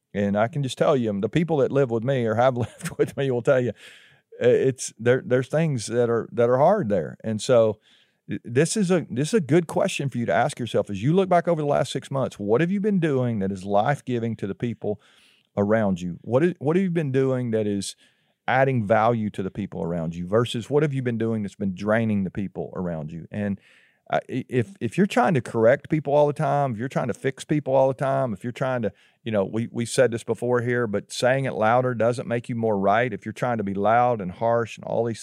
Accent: American